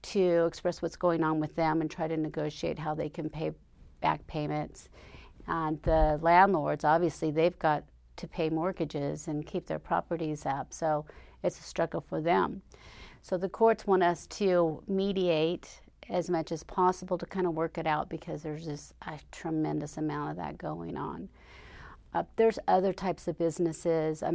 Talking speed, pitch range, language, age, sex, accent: 175 wpm, 155-175 Hz, English, 40-59, female, American